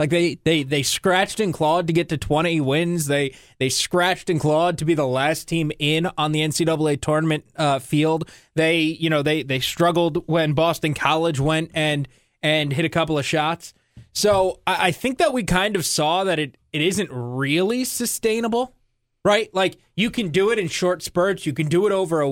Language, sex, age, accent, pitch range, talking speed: English, male, 20-39, American, 150-195 Hz, 205 wpm